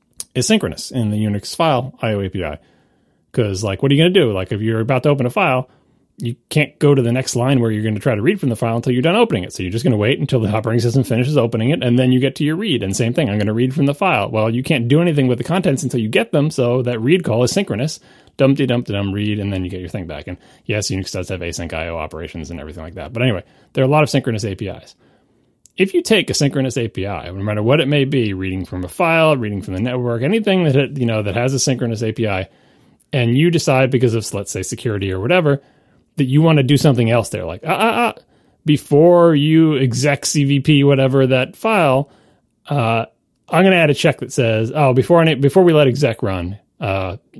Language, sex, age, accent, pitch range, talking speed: English, male, 30-49, American, 105-145 Hz, 255 wpm